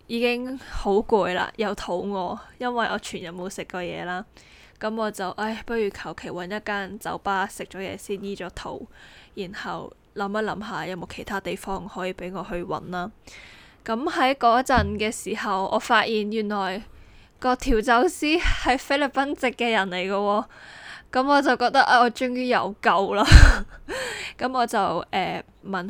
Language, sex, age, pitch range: Chinese, female, 20-39, 190-230 Hz